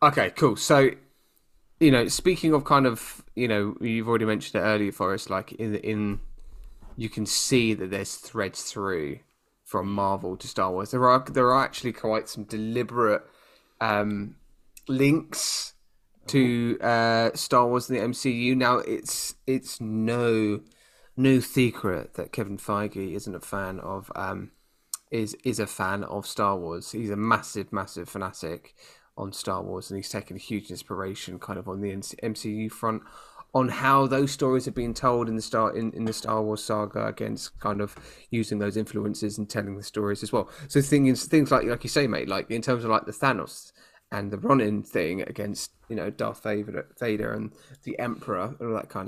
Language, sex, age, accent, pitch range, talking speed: English, male, 20-39, British, 105-125 Hz, 185 wpm